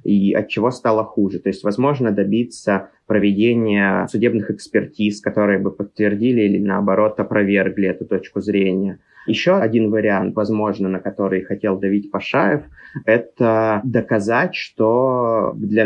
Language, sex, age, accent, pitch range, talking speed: Russian, male, 20-39, native, 100-110 Hz, 130 wpm